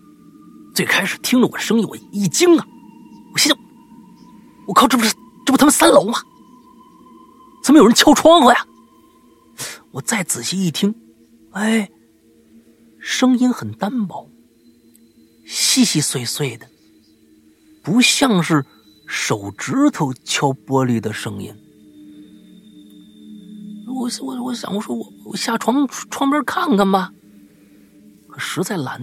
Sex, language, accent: male, Chinese, native